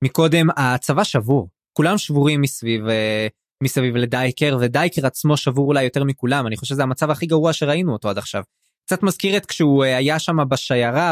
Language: Hebrew